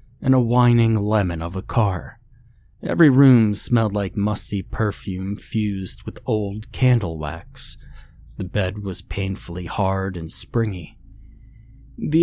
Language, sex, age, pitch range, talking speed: English, male, 30-49, 95-120 Hz, 130 wpm